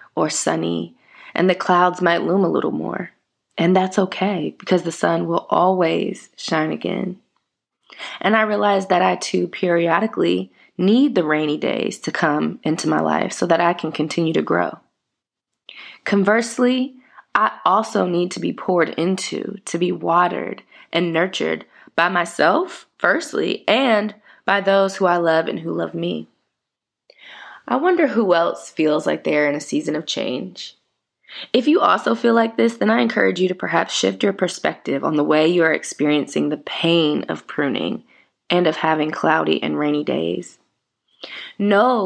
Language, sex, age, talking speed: English, female, 20-39, 165 wpm